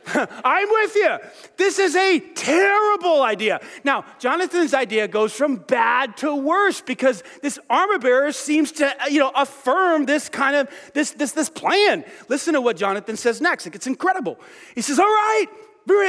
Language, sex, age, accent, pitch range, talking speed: English, male, 40-59, American, 230-350 Hz, 170 wpm